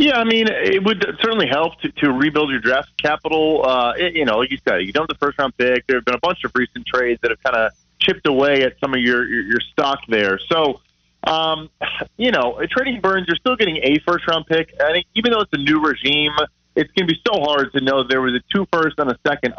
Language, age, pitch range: English, 30-49, 125-165 Hz